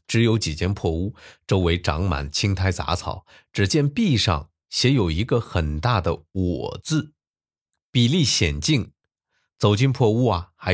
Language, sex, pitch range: Chinese, male, 85-125 Hz